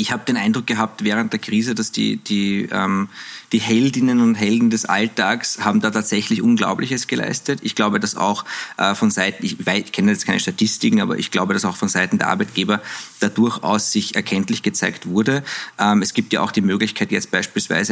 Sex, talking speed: male, 190 wpm